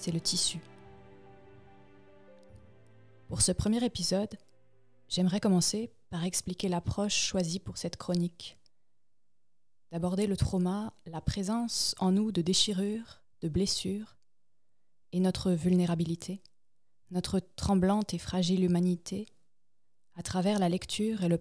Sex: female